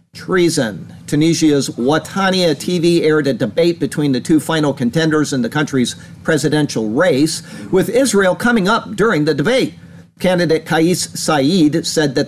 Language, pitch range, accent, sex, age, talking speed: English, 140-170 Hz, American, male, 50-69, 140 wpm